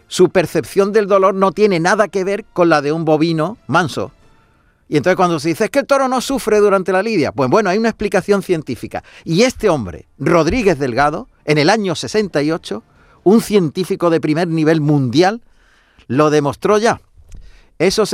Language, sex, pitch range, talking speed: Spanish, male, 130-190 Hz, 180 wpm